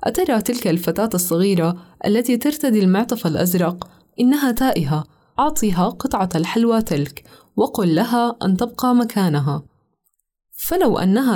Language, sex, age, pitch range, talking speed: Arabic, female, 20-39, 180-235 Hz, 110 wpm